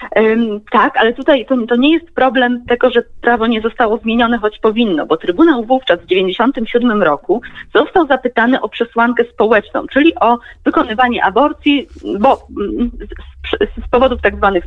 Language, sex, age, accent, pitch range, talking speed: Polish, female, 30-49, native, 205-270 Hz, 155 wpm